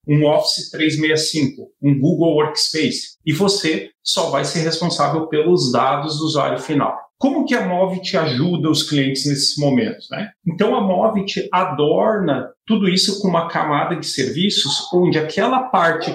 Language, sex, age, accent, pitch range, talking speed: Portuguese, male, 40-59, Brazilian, 140-185 Hz, 160 wpm